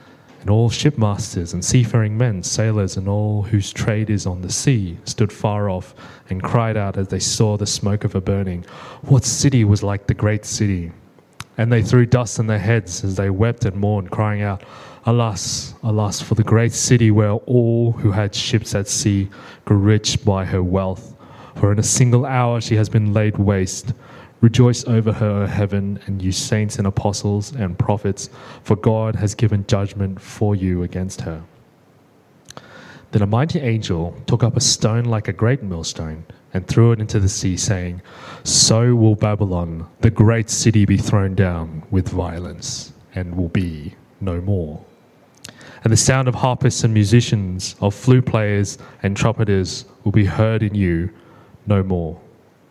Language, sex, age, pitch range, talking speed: English, male, 20-39, 100-120 Hz, 175 wpm